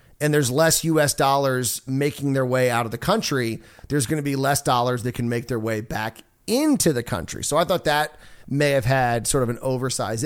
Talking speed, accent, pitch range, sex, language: 220 wpm, American, 125-170 Hz, male, English